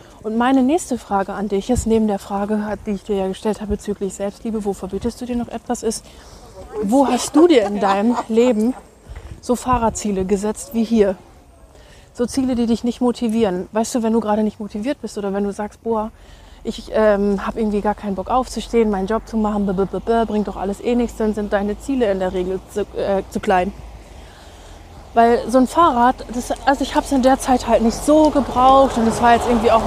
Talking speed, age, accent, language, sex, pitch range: 215 wpm, 20-39, German, German, female, 200-235 Hz